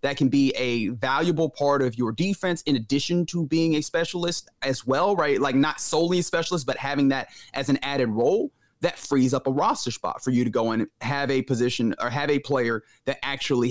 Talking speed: 220 wpm